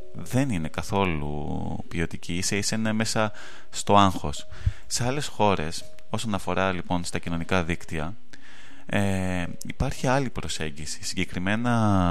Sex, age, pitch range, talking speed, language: male, 20-39, 85-110 Hz, 120 wpm, Greek